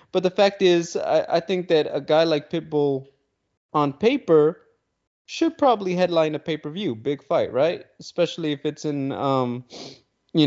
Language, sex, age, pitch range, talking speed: English, male, 20-39, 140-180 Hz, 170 wpm